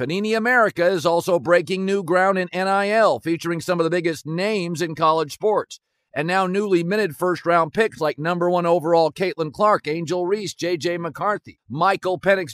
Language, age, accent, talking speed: English, 50-69, American, 175 wpm